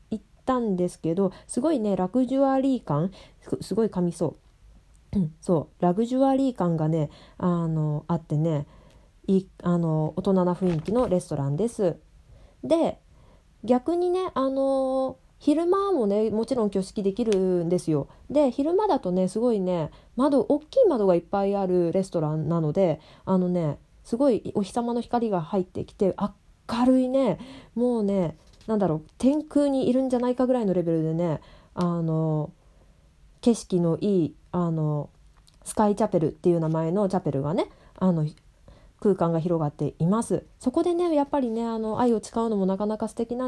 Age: 20-39